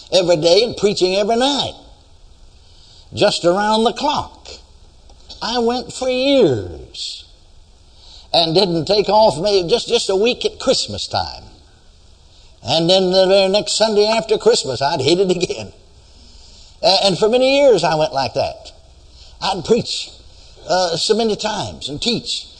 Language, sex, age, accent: English, male, 60-79, American